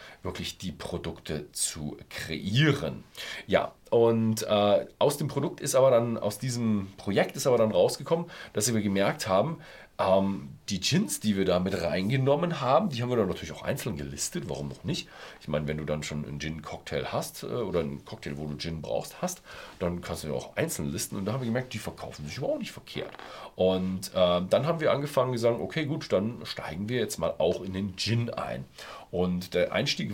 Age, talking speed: 40-59, 205 wpm